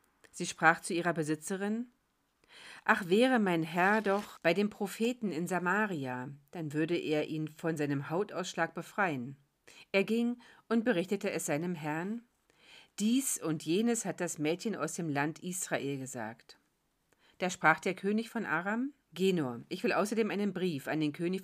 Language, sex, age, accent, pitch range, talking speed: German, female, 40-59, German, 155-215 Hz, 160 wpm